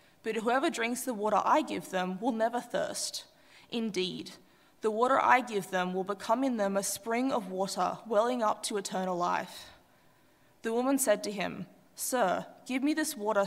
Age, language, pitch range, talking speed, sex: 20-39, English, 200-260 Hz, 180 wpm, female